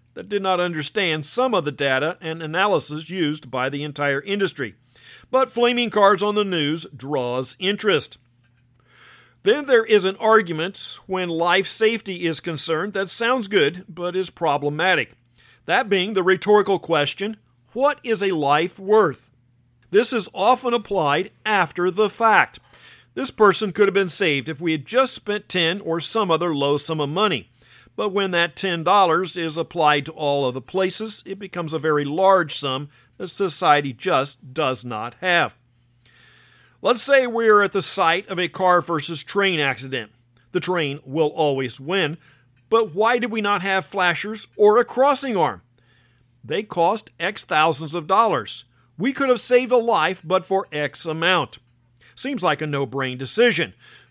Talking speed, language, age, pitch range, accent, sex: 165 wpm, English, 50-69, 140-205 Hz, American, male